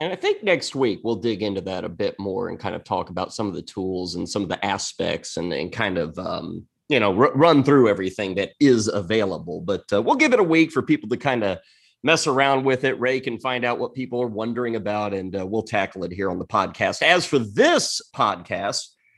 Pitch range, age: 115-155 Hz, 30-49